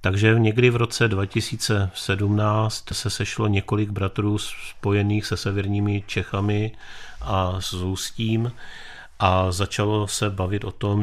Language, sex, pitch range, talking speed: Czech, male, 90-100 Hz, 120 wpm